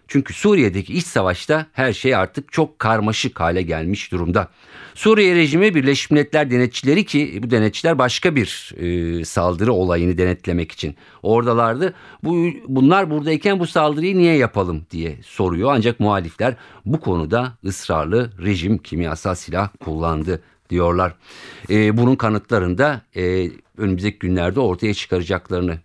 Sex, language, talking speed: male, Turkish, 130 wpm